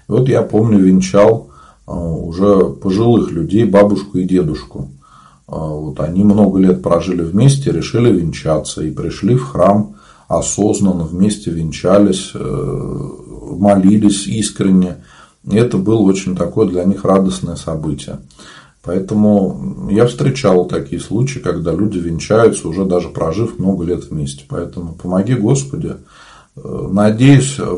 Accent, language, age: native, Russian, 40-59